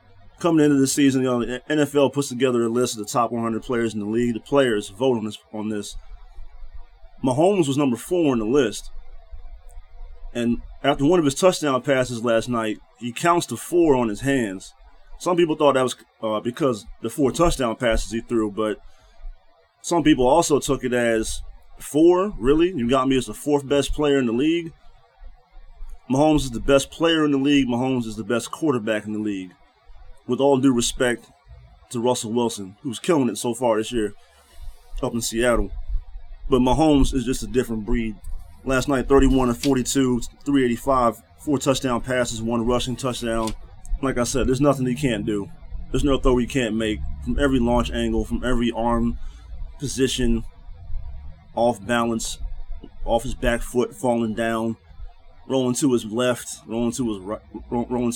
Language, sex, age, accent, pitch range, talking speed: English, male, 30-49, American, 110-135 Hz, 175 wpm